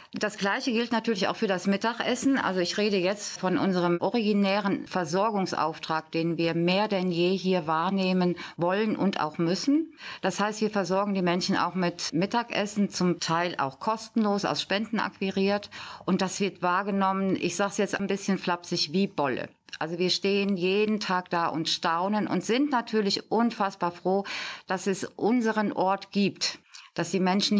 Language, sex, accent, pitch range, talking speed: German, female, German, 175-205 Hz, 165 wpm